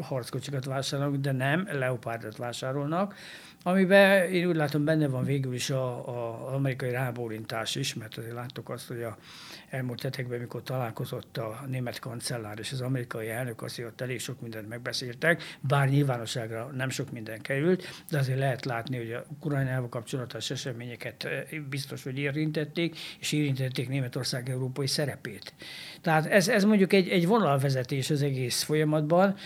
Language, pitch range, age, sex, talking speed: Hungarian, 125-150 Hz, 60-79, male, 150 wpm